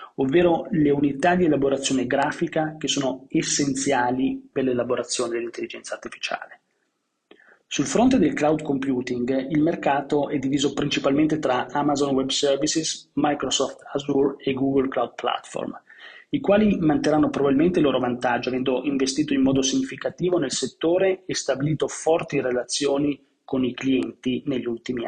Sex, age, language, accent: male, 30-49, Italian, native